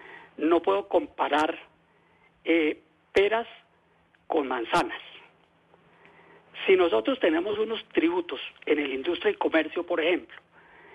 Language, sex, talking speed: Spanish, male, 105 wpm